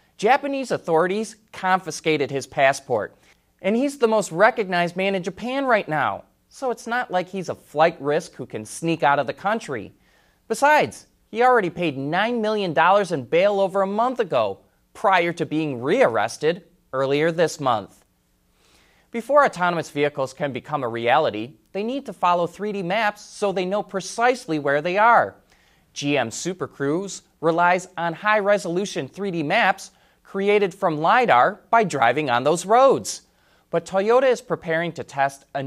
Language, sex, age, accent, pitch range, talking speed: English, male, 20-39, American, 150-215 Hz, 155 wpm